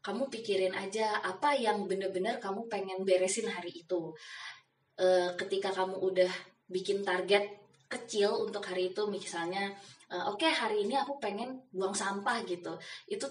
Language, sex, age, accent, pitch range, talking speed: Indonesian, female, 20-39, native, 185-220 Hz, 150 wpm